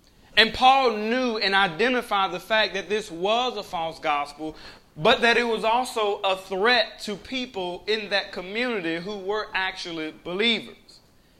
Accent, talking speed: American, 155 wpm